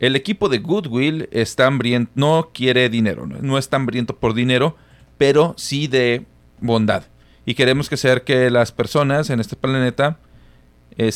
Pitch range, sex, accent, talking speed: 80-130 Hz, male, Mexican, 155 wpm